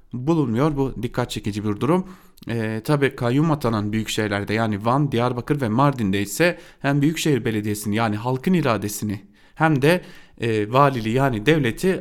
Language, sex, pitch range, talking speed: Turkish, male, 105-150 Hz, 145 wpm